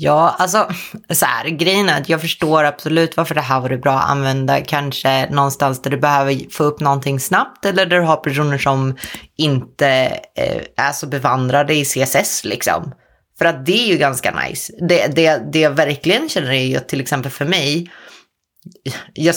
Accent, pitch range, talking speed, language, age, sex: native, 140-175 Hz, 185 wpm, Swedish, 30-49, female